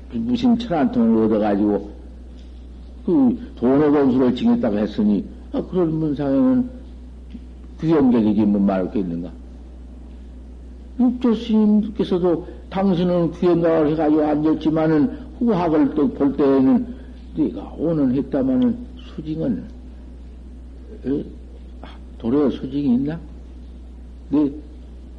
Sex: male